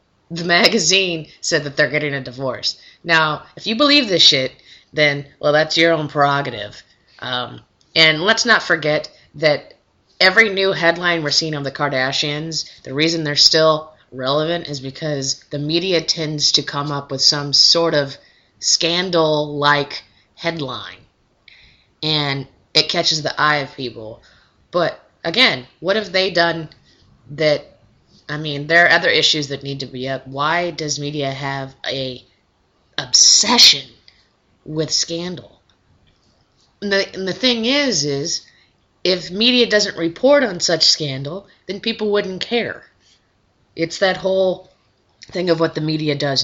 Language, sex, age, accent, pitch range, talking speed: English, female, 20-39, American, 135-170 Hz, 145 wpm